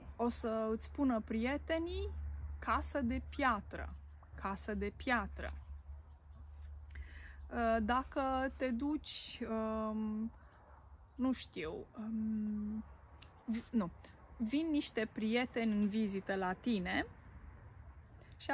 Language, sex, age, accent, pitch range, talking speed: Romanian, female, 20-39, native, 190-265 Hz, 80 wpm